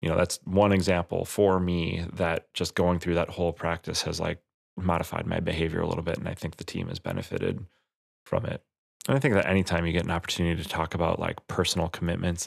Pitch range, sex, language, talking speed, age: 85-95 Hz, male, English, 220 wpm, 20-39